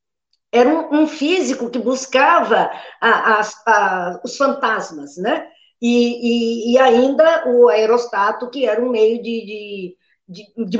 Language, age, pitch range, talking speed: Portuguese, 50-69, 230-300 Hz, 110 wpm